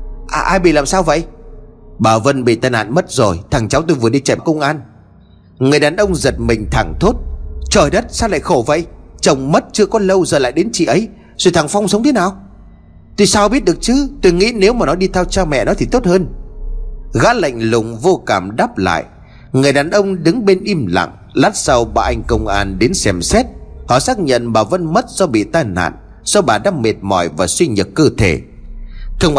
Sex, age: male, 30-49